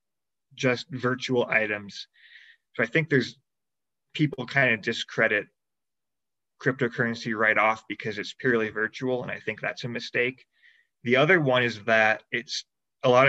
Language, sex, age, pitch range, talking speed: English, male, 20-39, 115-135 Hz, 145 wpm